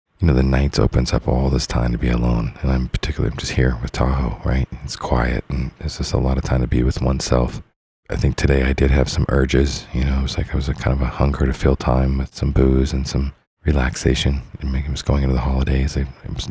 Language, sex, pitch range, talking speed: English, male, 65-75 Hz, 270 wpm